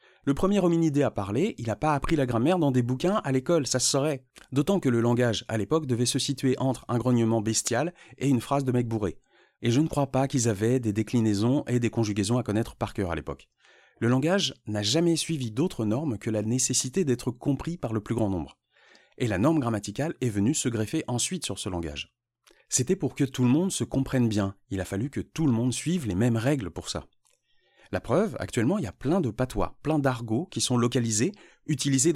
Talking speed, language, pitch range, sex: 230 wpm, French, 115-155 Hz, male